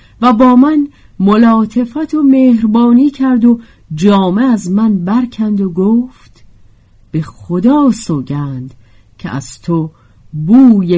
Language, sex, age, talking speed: Persian, female, 50-69, 115 wpm